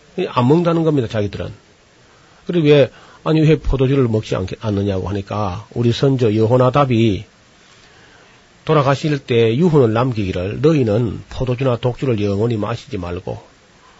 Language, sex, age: Korean, male, 40-59